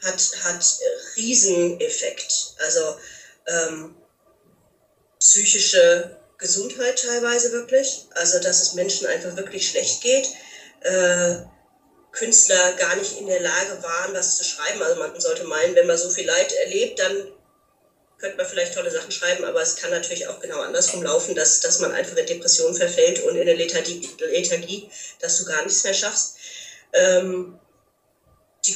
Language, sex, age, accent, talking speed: German, female, 30-49, German, 150 wpm